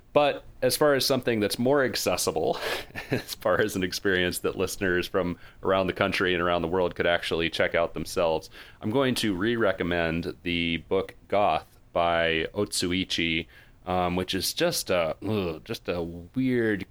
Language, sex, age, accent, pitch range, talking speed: English, male, 30-49, American, 85-105 Hz, 155 wpm